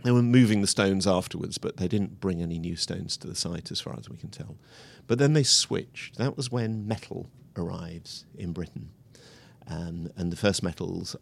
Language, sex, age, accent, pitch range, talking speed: English, male, 50-69, British, 90-125 Hz, 205 wpm